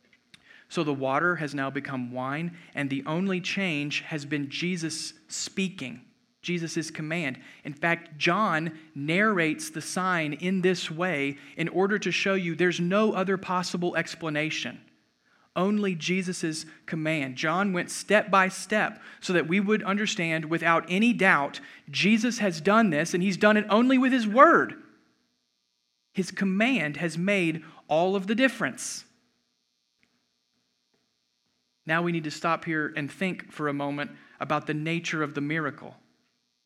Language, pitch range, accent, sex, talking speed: English, 150-185 Hz, American, male, 145 wpm